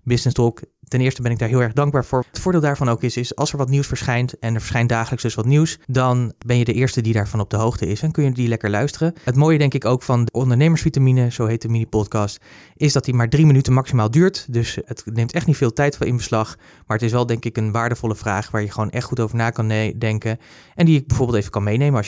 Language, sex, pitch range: Dutch, male, 110-130 Hz